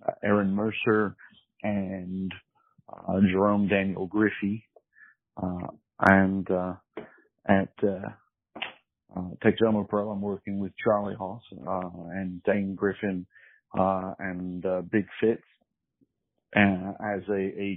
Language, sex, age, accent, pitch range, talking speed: English, male, 40-59, American, 95-105 Hz, 115 wpm